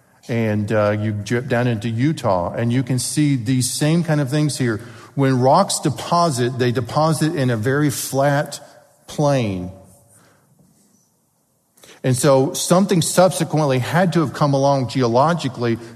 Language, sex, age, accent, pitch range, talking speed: English, male, 50-69, American, 120-150 Hz, 140 wpm